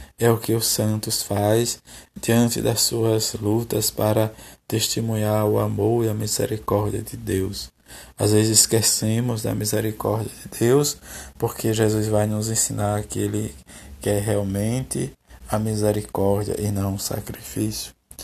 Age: 20-39